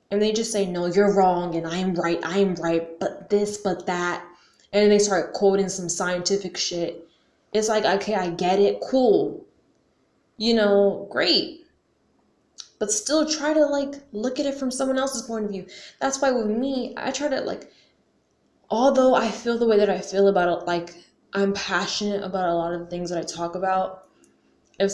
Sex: female